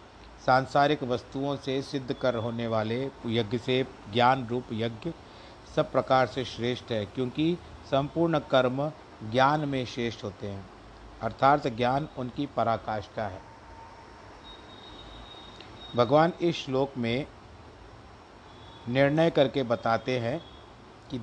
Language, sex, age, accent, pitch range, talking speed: Hindi, male, 50-69, native, 110-140 Hz, 110 wpm